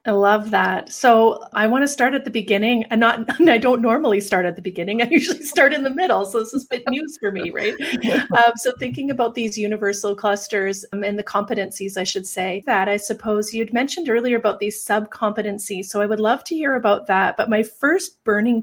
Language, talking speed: English, 220 wpm